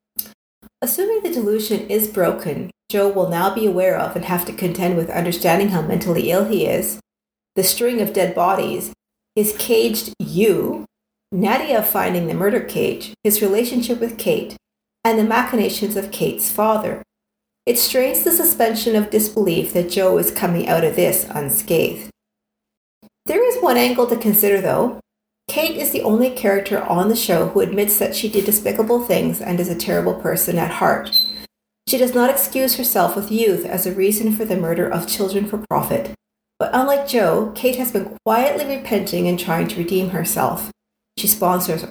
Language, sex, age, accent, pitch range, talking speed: English, female, 50-69, American, 185-230 Hz, 170 wpm